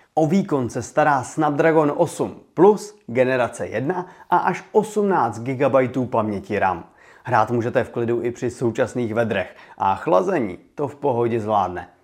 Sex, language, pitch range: male, Czech, 120-165 Hz